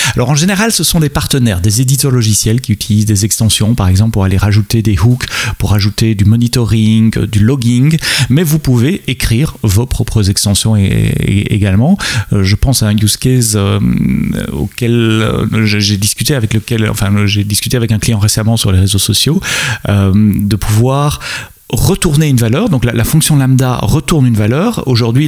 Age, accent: 30-49, French